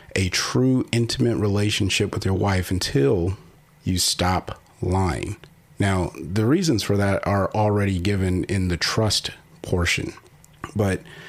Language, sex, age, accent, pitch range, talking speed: English, male, 40-59, American, 95-125 Hz, 130 wpm